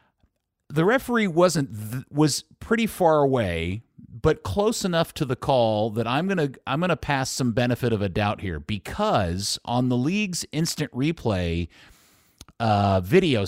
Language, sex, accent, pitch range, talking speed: English, male, American, 105-150 Hz, 150 wpm